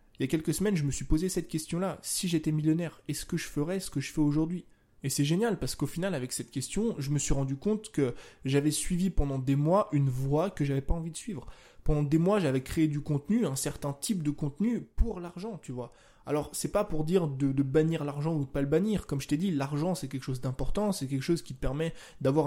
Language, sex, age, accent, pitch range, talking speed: French, male, 20-39, French, 140-175 Hz, 260 wpm